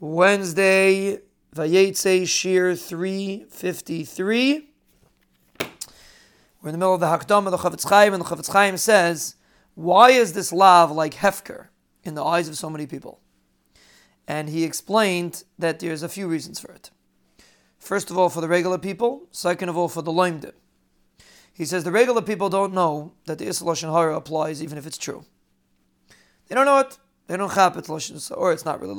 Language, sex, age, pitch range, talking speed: English, male, 40-59, 170-205 Hz, 175 wpm